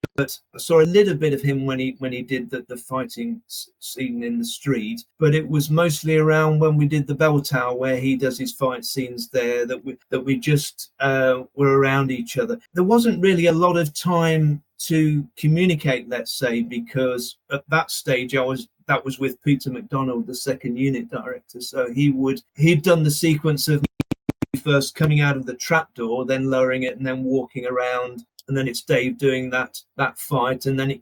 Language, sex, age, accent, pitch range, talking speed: English, male, 40-59, British, 130-175 Hz, 205 wpm